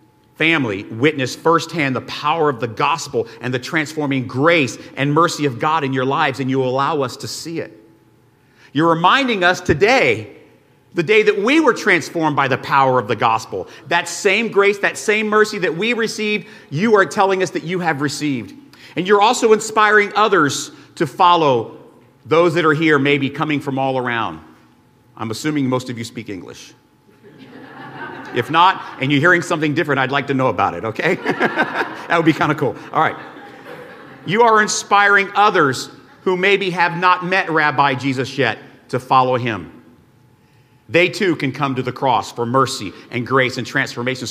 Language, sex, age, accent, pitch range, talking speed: English, male, 40-59, American, 130-175 Hz, 180 wpm